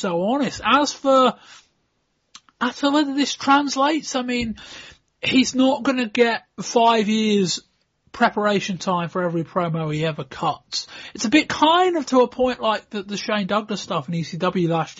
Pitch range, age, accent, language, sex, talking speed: 170-230 Hz, 30-49, British, English, male, 170 wpm